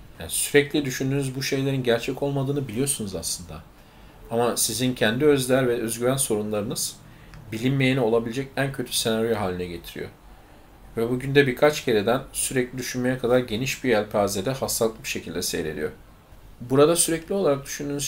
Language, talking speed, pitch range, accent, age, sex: Turkish, 140 wpm, 110-135 Hz, native, 40-59, male